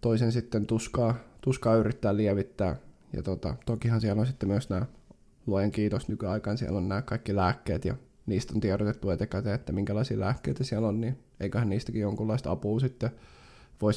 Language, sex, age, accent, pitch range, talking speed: Finnish, male, 20-39, native, 100-120 Hz, 170 wpm